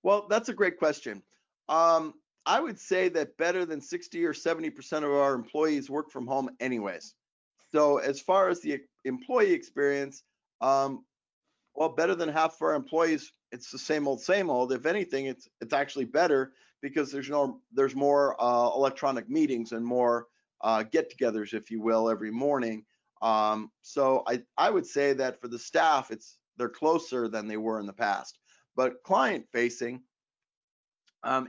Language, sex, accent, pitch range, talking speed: English, male, American, 120-160 Hz, 170 wpm